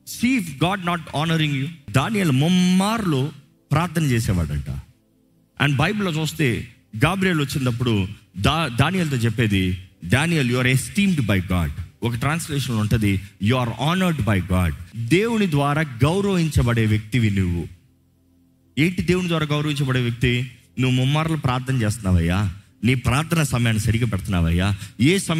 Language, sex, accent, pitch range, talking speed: Telugu, male, native, 105-150 Hz, 155 wpm